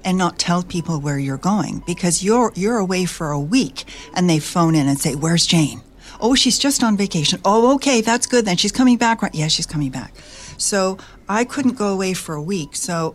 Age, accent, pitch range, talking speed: 60-79, American, 150-185 Hz, 225 wpm